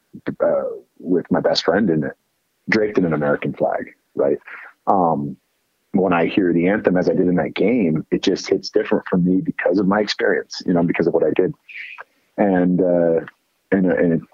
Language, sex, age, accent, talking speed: English, male, 40-59, American, 195 wpm